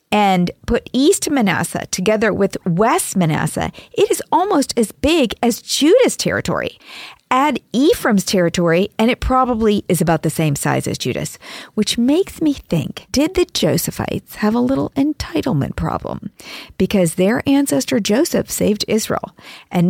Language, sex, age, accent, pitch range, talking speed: English, female, 50-69, American, 170-260 Hz, 145 wpm